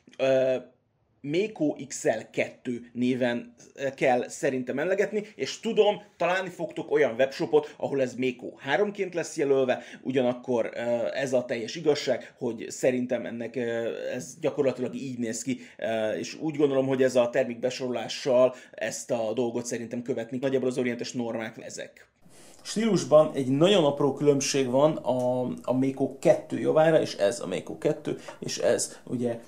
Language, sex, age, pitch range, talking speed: Hungarian, male, 30-49, 125-150 Hz, 140 wpm